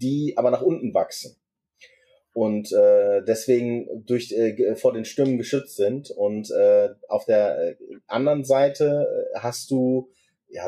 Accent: German